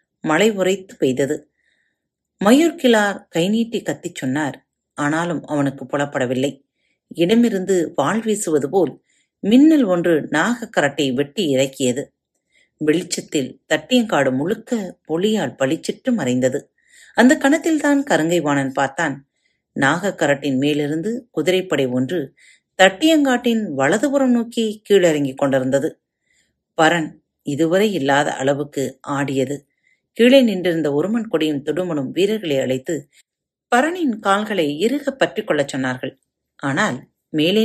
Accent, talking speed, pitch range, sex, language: native, 95 wpm, 145-235 Hz, female, Tamil